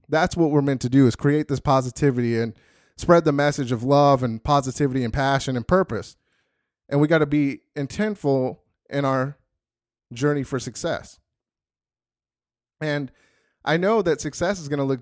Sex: male